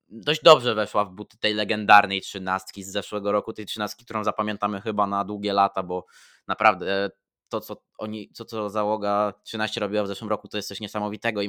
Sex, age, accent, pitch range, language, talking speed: male, 20-39, native, 100-115 Hz, Polish, 195 wpm